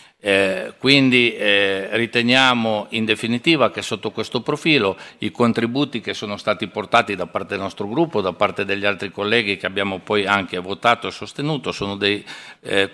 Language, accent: Italian, native